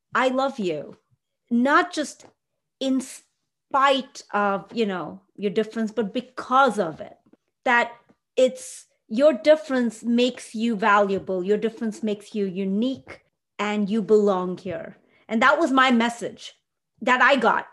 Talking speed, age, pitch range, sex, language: 135 wpm, 30-49, 210-270 Hz, female, English